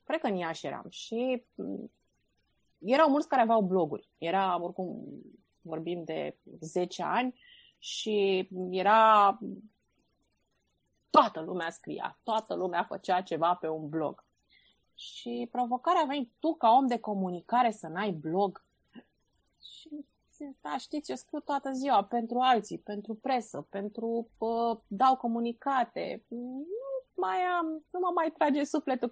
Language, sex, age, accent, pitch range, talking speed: Romanian, female, 30-49, native, 185-255 Hz, 120 wpm